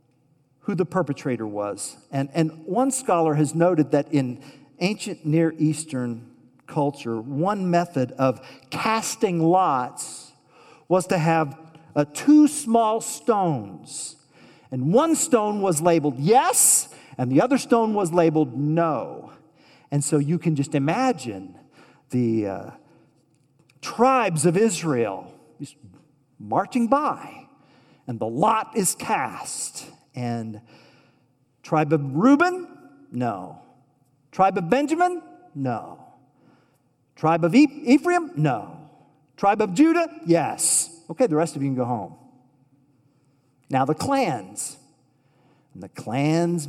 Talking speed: 115 wpm